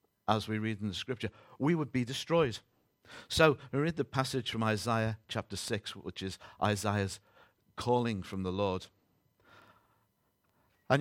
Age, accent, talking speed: 50-69, British, 145 wpm